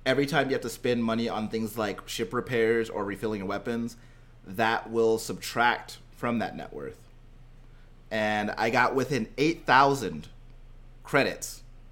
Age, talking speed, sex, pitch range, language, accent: 30-49, 145 wpm, male, 115-145 Hz, English, American